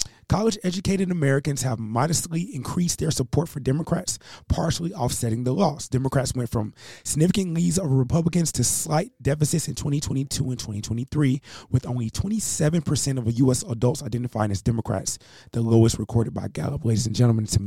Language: English